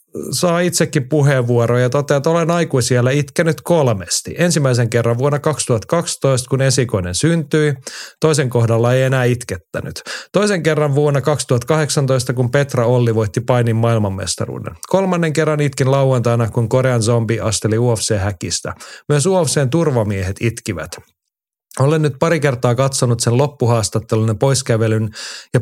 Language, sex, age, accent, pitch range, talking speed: Finnish, male, 30-49, native, 115-145 Hz, 130 wpm